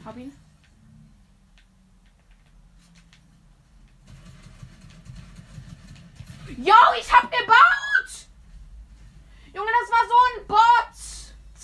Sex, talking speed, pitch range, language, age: female, 65 wpm, 190-315 Hz, German, 20-39